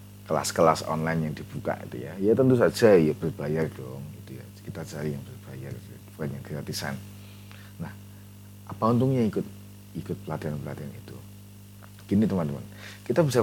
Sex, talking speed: male, 145 wpm